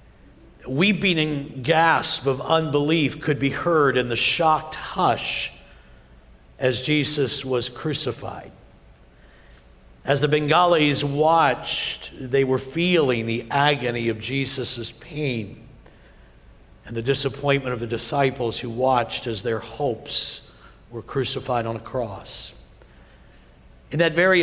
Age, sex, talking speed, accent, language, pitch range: 60-79, male, 115 wpm, American, English, 115-150 Hz